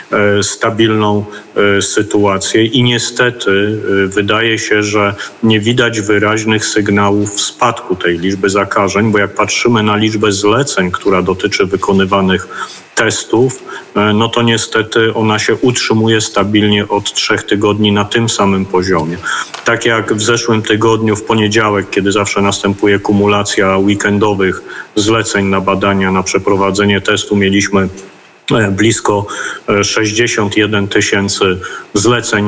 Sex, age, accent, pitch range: male, 40-59, native, 100-110 Hz